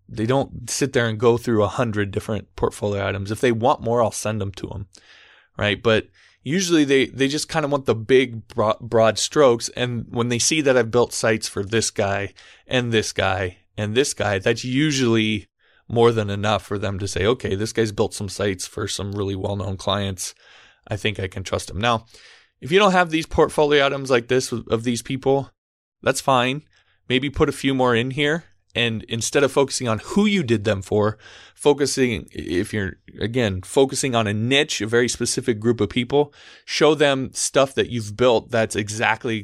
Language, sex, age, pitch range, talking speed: English, male, 20-39, 105-135 Hz, 200 wpm